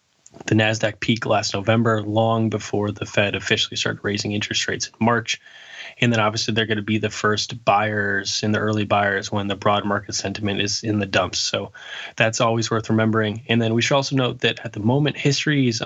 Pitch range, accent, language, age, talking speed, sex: 105-115 Hz, American, English, 20-39, 210 wpm, male